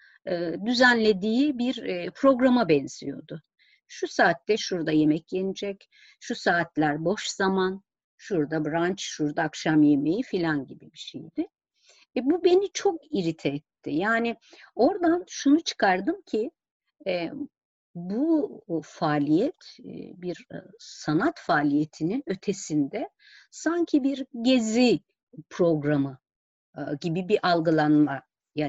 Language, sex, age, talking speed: Turkish, female, 50-69, 100 wpm